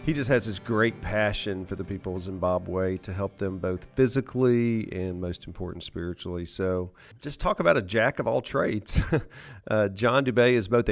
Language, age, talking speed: English, 40-59, 170 wpm